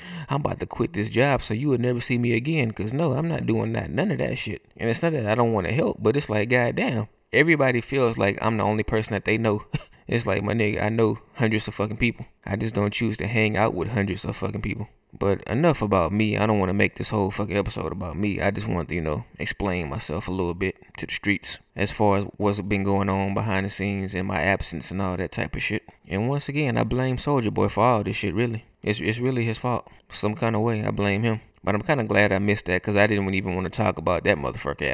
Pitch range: 100-115 Hz